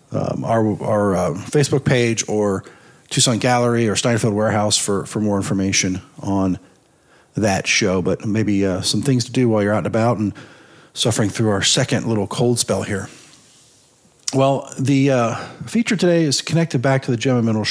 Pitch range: 105-130 Hz